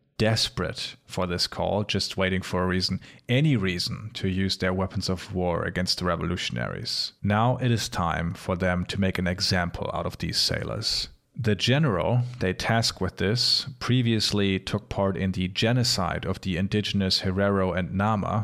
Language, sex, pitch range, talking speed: English, male, 95-115 Hz, 170 wpm